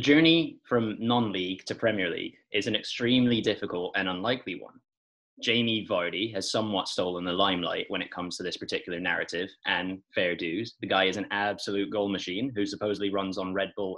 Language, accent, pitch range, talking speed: English, British, 95-120 Hz, 185 wpm